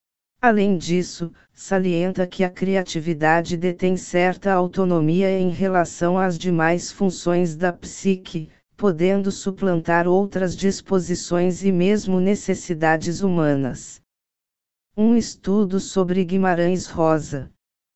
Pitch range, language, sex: 170-190 Hz, Portuguese, female